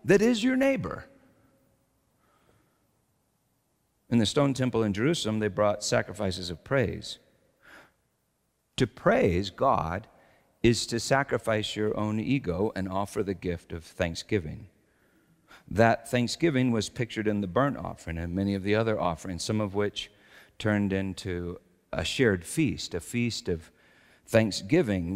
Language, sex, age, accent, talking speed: English, male, 50-69, American, 135 wpm